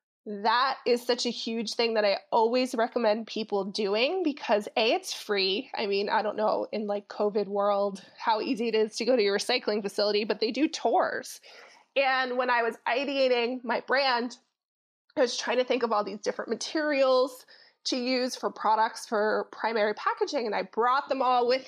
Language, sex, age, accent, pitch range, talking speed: English, female, 20-39, American, 215-260 Hz, 190 wpm